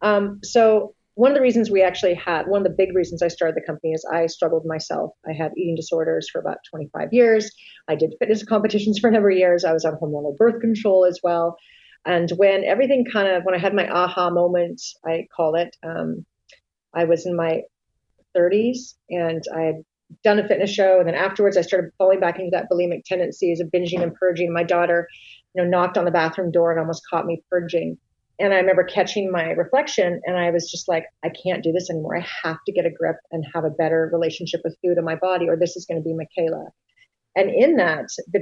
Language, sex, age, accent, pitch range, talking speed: English, female, 40-59, American, 165-190 Hz, 225 wpm